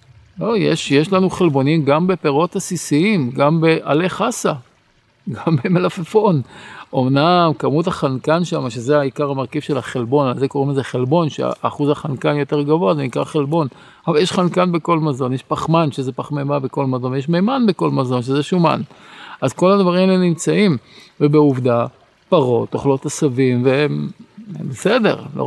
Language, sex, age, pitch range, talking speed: Hebrew, male, 50-69, 130-170 Hz, 150 wpm